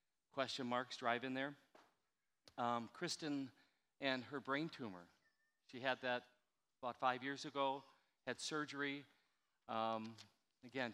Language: English